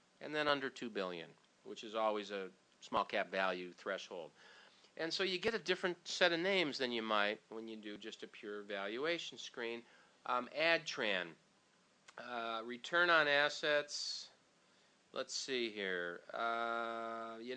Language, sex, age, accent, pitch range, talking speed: English, male, 40-59, American, 115-160 Hz, 145 wpm